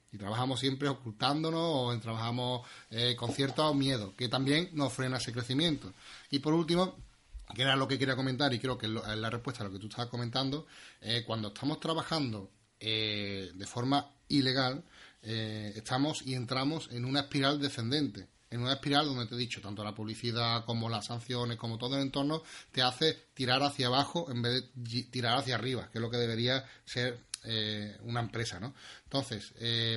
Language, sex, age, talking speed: Spanish, male, 30-49, 185 wpm